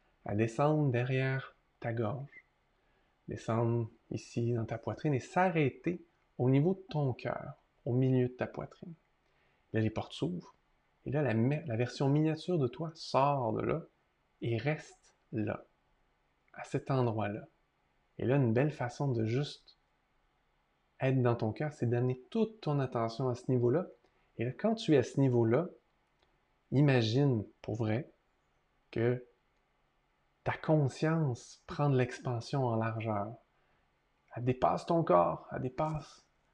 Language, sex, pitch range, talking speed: French, male, 120-150 Hz, 145 wpm